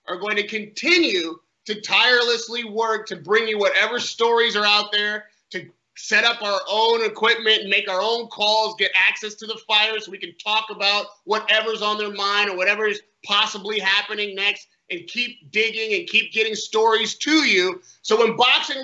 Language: English